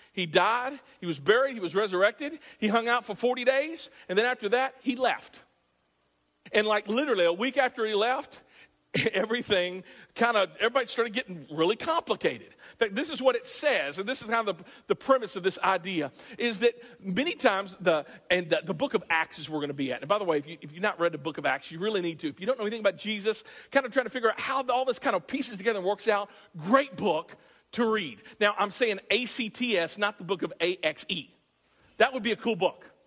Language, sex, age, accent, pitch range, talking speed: English, male, 50-69, American, 190-255 Hz, 240 wpm